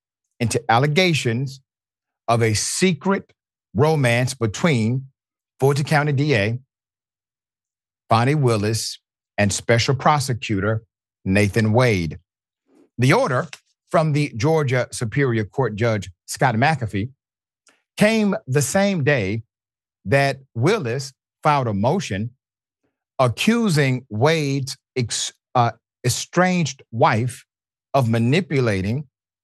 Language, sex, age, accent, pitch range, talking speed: English, male, 50-69, American, 105-140 Hz, 85 wpm